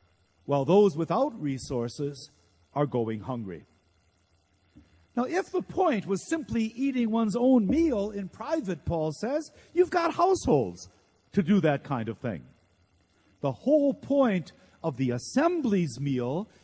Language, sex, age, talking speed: English, male, 50-69, 135 wpm